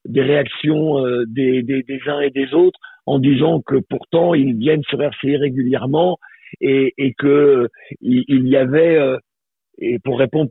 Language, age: French, 50-69